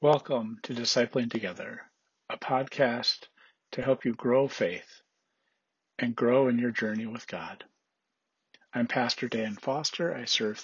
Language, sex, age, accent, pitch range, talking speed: English, male, 50-69, American, 110-130 Hz, 135 wpm